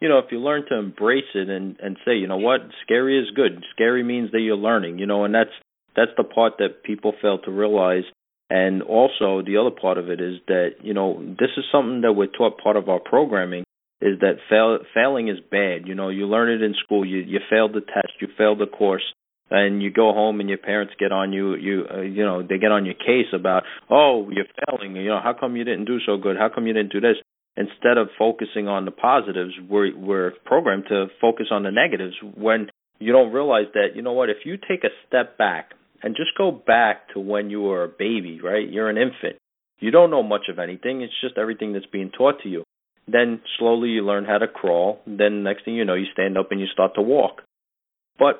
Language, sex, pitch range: English, male, 95-115 Hz